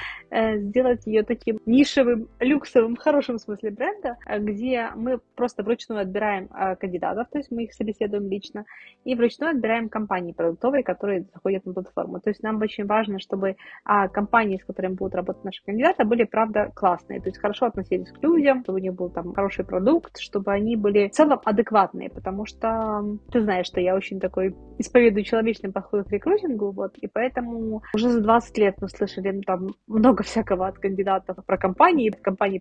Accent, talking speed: native, 175 wpm